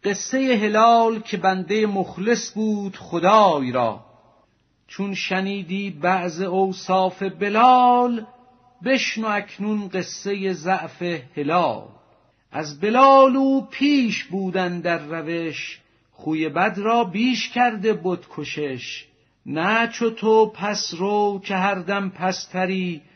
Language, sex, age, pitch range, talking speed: Persian, male, 50-69, 160-215 Hz, 100 wpm